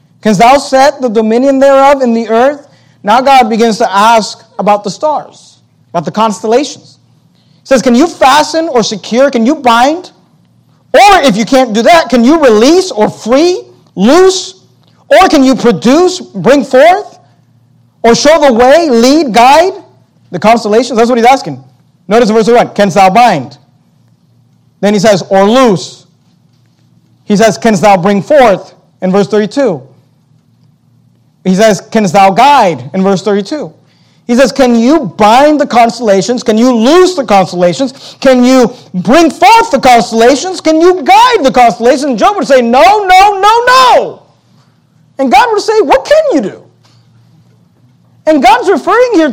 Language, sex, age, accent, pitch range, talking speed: English, male, 40-59, American, 200-280 Hz, 160 wpm